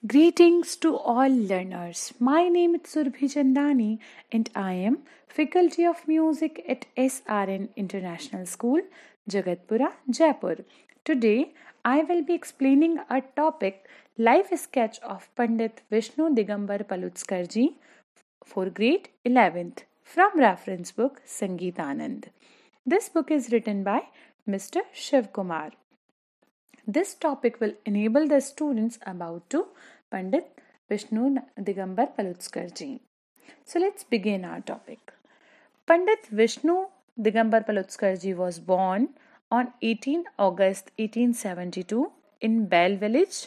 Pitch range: 200-310 Hz